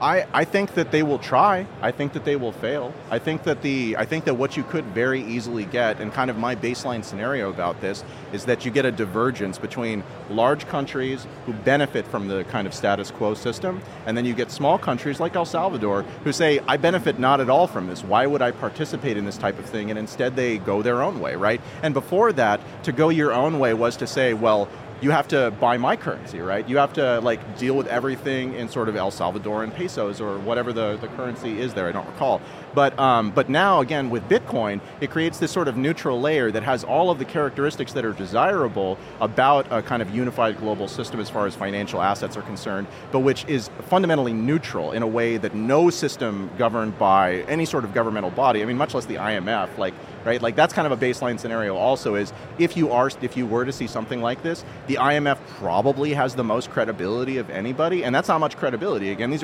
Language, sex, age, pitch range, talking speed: English, male, 30-49, 110-145 Hz, 230 wpm